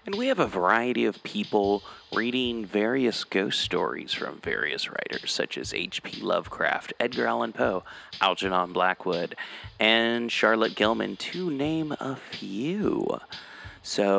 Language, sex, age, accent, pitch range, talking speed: English, male, 30-49, American, 100-155 Hz, 130 wpm